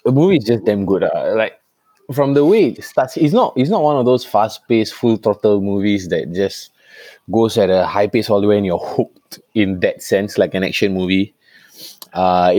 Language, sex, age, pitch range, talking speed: Tamil, male, 20-39, 95-115 Hz, 215 wpm